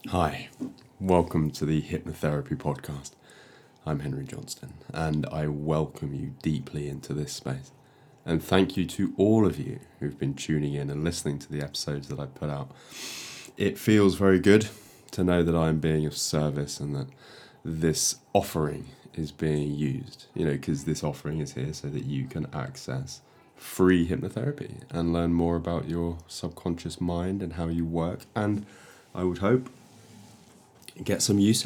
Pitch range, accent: 75-105 Hz, British